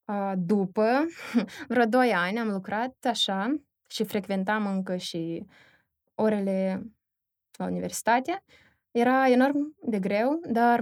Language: Romanian